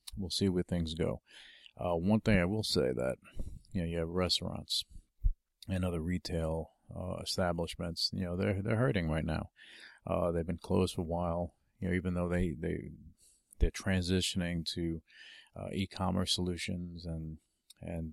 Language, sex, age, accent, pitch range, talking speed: English, male, 40-59, American, 85-95 Hz, 165 wpm